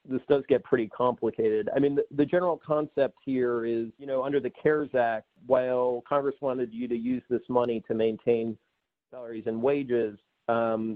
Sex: male